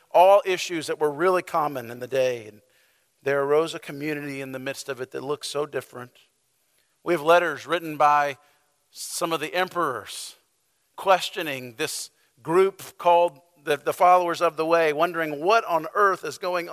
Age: 50-69